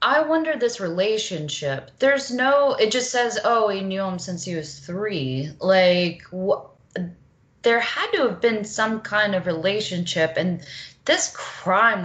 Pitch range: 145-190 Hz